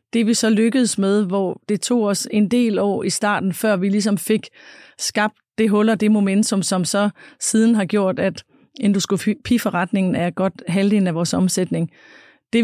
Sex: female